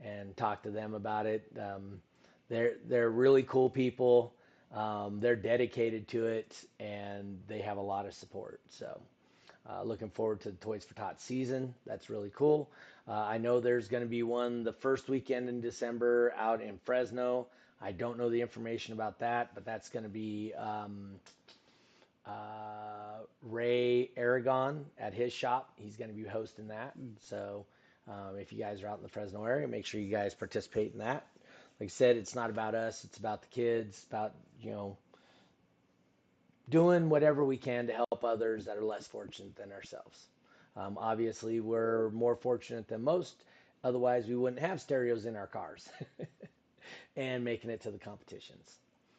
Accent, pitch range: American, 105-125 Hz